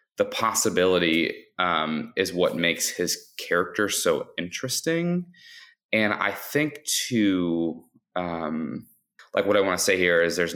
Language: English